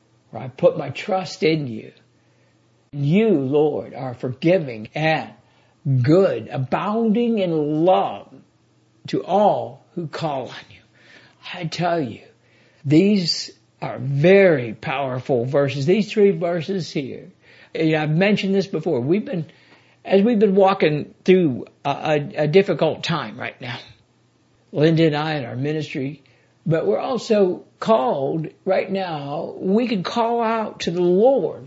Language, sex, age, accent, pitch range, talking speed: English, male, 60-79, American, 140-190 Hz, 135 wpm